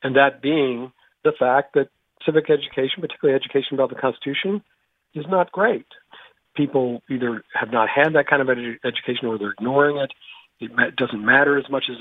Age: 50-69